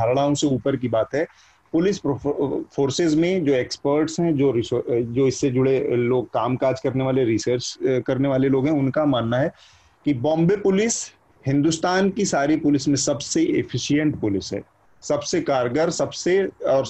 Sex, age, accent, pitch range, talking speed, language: male, 30-49, native, 130-160 Hz, 70 wpm, Hindi